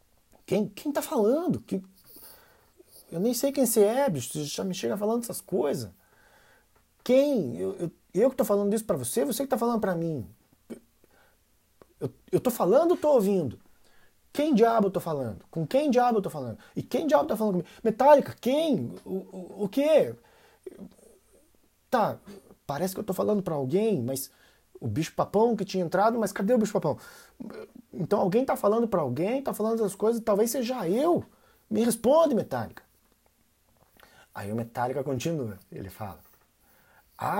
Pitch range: 145-235 Hz